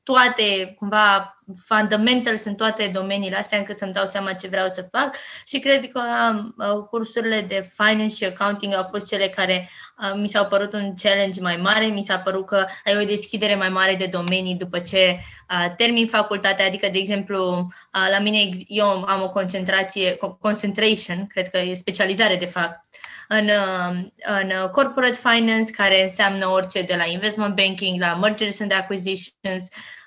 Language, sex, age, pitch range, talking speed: Romanian, female, 20-39, 190-215 Hz, 160 wpm